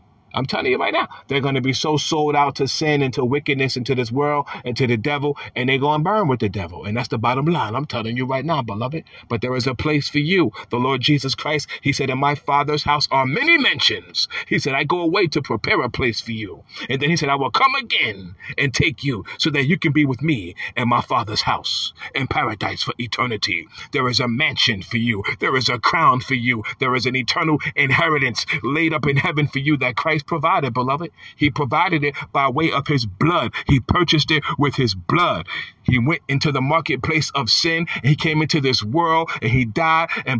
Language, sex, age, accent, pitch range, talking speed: English, male, 40-59, American, 130-160 Hz, 235 wpm